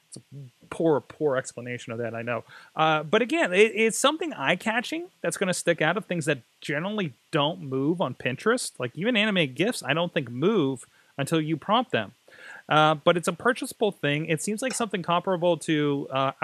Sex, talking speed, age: male, 185 wpm, 30-49